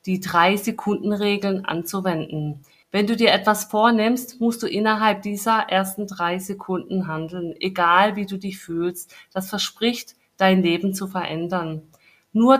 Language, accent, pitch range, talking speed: German, German, 170-200 Hz, 145 wpm